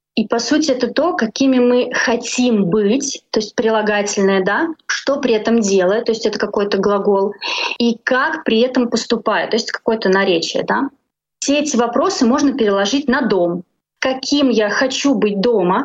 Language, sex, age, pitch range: Russian, female, 20-39, 210-255 Hz